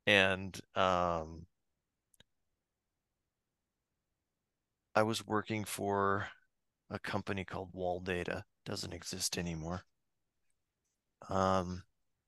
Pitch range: 90-110 Hz